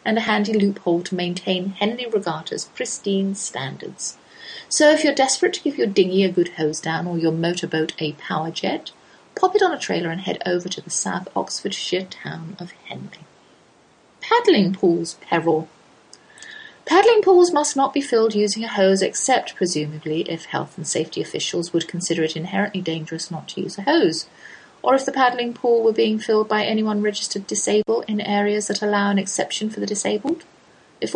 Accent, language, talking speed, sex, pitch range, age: British, English, 180 wpm, female, 175-265 Hz, 30-49